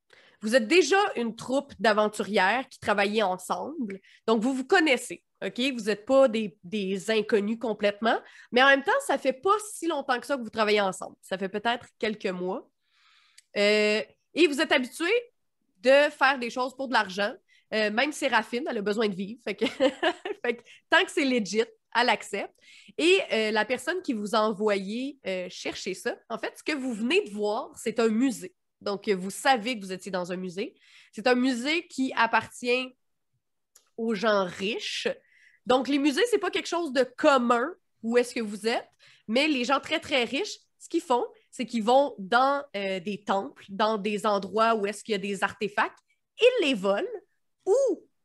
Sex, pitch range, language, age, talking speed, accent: female, 215-290 Hz, French, 20-39, 195 wpm, Canadian